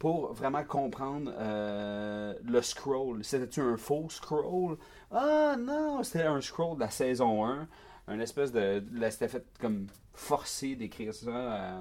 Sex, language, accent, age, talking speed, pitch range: male, French, Canadian, 30-49, 145 wpm, 110-150 Hz